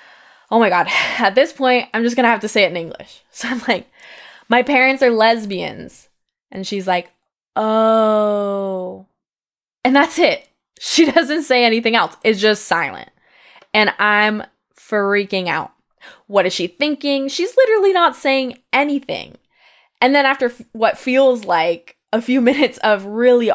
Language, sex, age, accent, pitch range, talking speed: English, female, 10-29, American, 200-270 Hz, 155 wpm